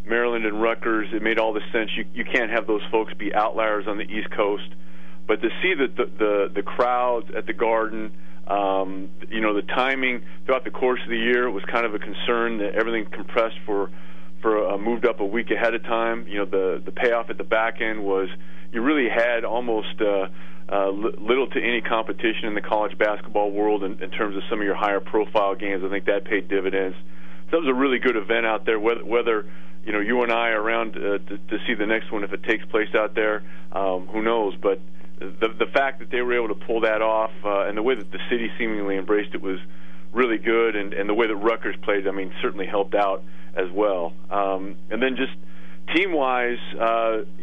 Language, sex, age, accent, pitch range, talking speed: English, male, 40-59, American, 95-115 Hz, 225 wpm